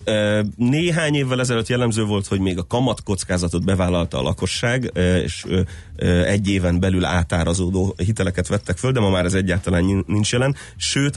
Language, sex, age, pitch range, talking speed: Hungarian, male, 30-49, 95-120 Hz, 155 wpm